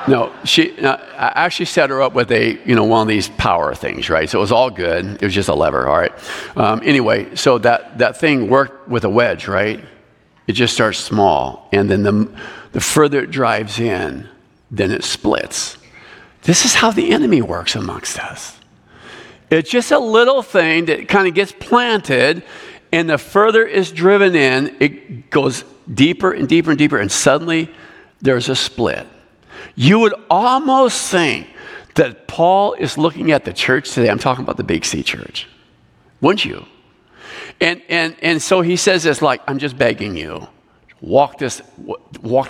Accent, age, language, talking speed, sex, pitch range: American, 50-69, English, 180 wpm, male, 115-185 Hz